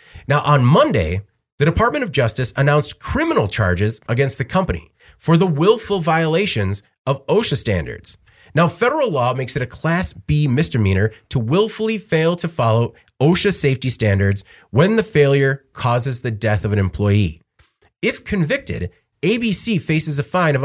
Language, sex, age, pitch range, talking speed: English, male, 30-49, 105-145 Hz, 155 wpm